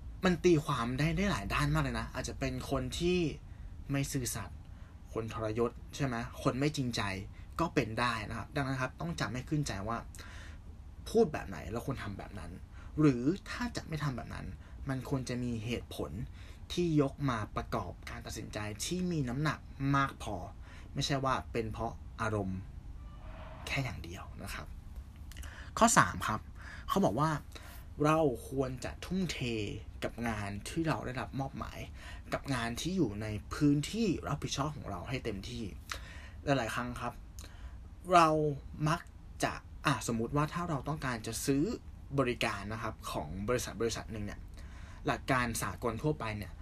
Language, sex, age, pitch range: Thai, male, 20-39, 90-140 Hz